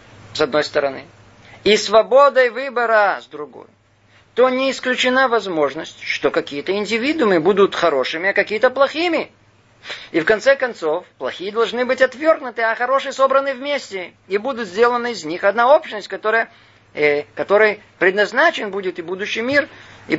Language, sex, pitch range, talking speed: Russian, male, 150-230 Hz, 145 wpm